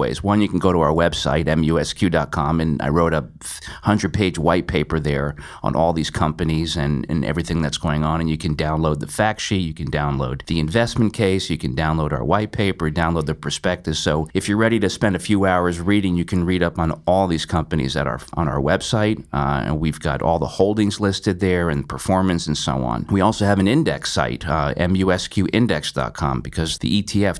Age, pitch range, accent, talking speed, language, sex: 40-59, 80-100 Hz, American, 210 wpm, English, male